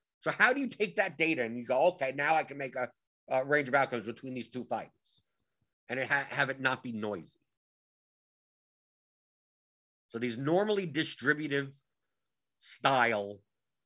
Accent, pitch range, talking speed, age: American, 105-150 Hz, 160 wpm, 50-69